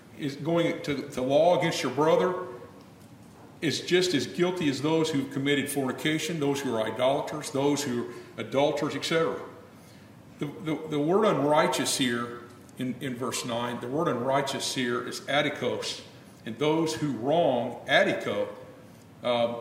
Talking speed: 145 wpm